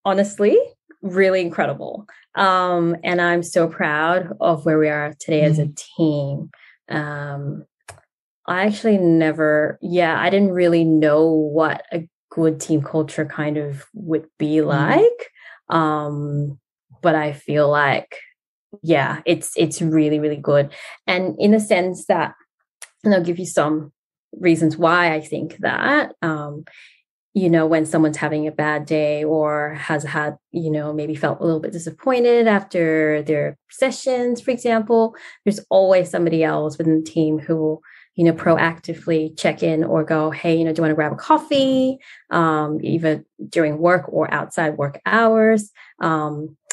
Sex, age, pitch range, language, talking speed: female, 20-39, 150-180 Hz, English, 155 wpm